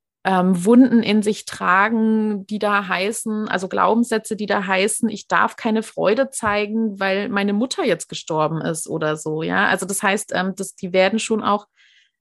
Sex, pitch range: female, 175-220 Hz